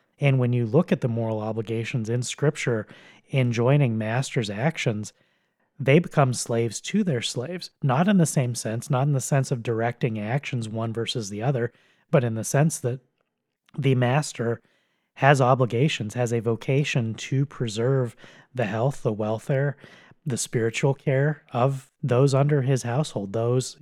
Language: English